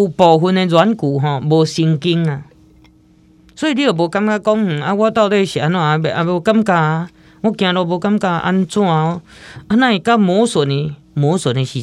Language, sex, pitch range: Chinese, female, 135-180 Hz